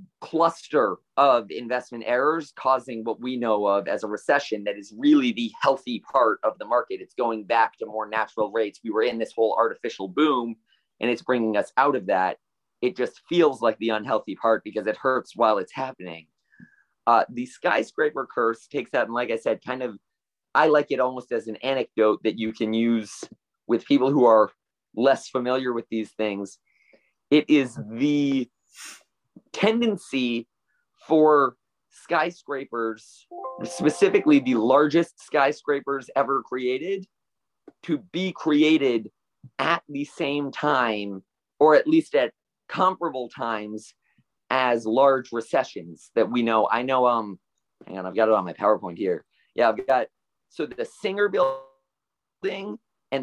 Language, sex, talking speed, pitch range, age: English, male, 155 wpm, 110-160 Hz, 30-49